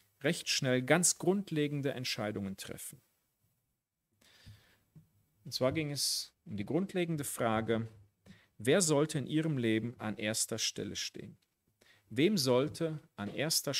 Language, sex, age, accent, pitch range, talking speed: German, male, 40-59, German, 110-155 Hz, 115 wpm